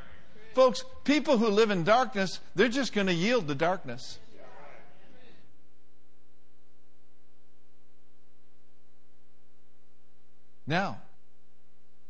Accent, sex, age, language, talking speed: American, male, 60-79, English, 70 wpm